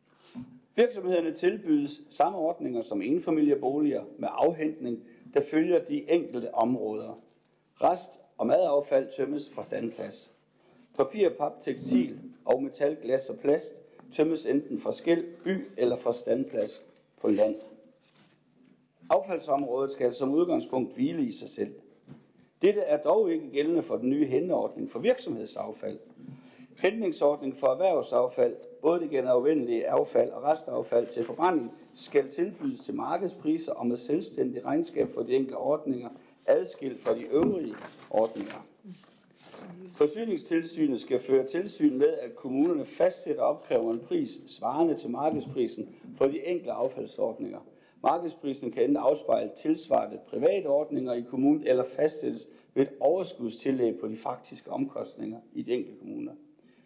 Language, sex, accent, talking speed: Danish, male, native, 130 wpm